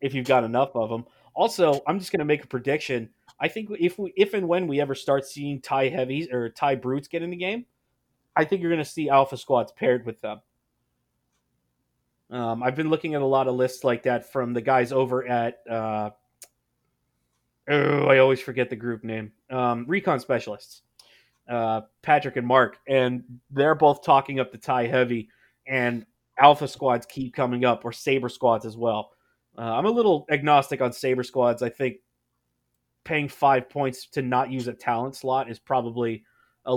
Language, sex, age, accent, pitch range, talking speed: English, male, 30-49, American, 120-145 Hz, 190 wpm